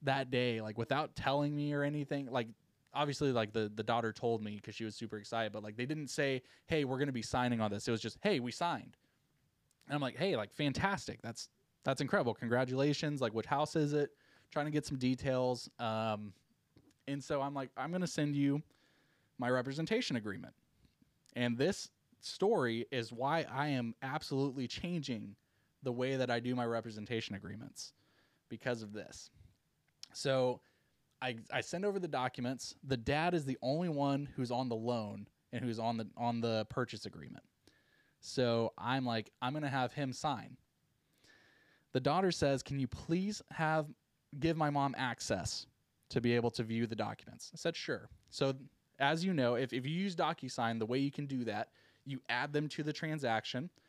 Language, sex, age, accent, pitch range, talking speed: English, male, 20-39, American, 115-145 Hz, 190 wpm